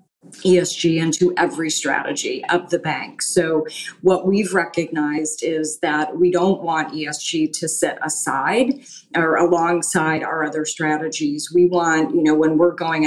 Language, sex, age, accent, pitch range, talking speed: English, female, 30-49, American, 155-175 Hz, 145 wpm